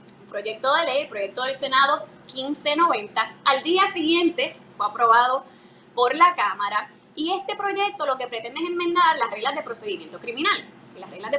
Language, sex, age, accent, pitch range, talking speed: English, female, 20-39, American, 240-355 Hz, 170 wpm